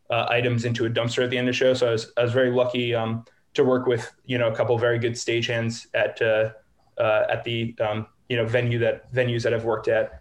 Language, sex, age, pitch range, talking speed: English, male, 20-39, 115-130 Hz, 265 wpm